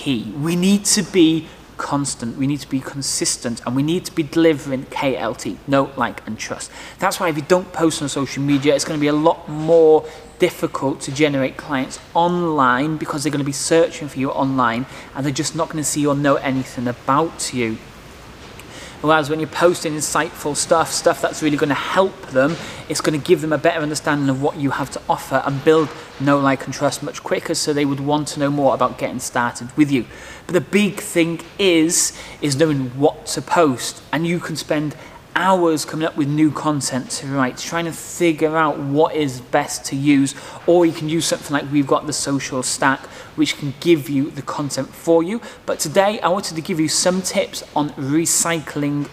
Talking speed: 205 wpm